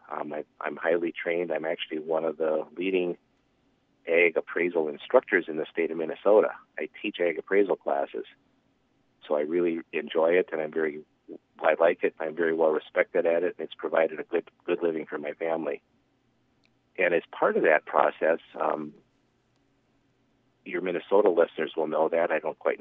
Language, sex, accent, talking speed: English, male, American, 180 wpm